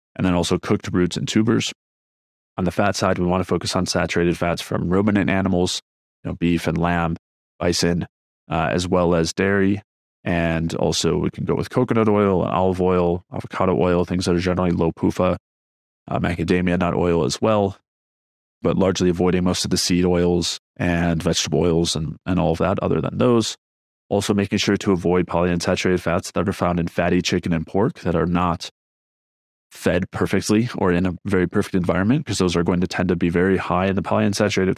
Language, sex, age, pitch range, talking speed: English, male, 30-49, 85-95 Hz, 195 wpm